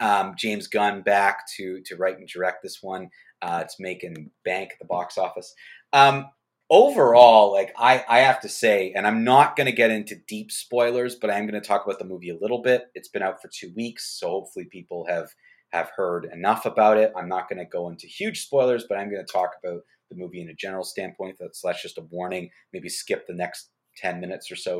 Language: English